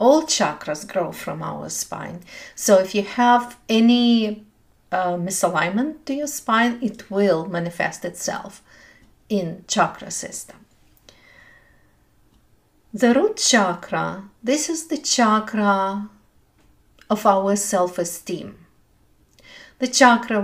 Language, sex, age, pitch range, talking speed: English, female, 50-69, 180-235 Hz, 105 wpm